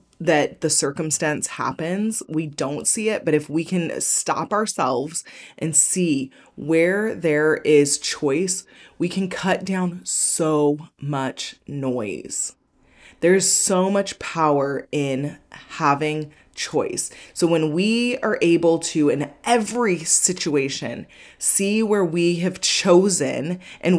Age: 20-39